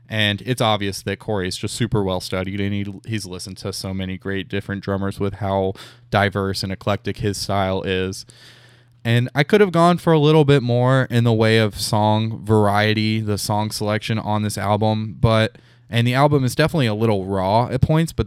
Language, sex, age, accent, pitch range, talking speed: English, male, 20-39, American, 100-115 Hz, 200 wpm